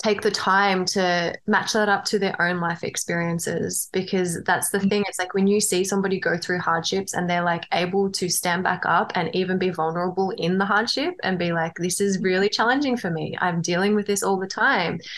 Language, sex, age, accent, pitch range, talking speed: English, female, 20-39, Australian, 175-210 Hz, 220 wpm